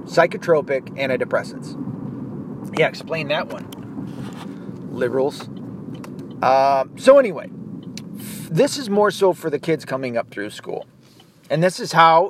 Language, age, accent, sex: English, 40-59, American, male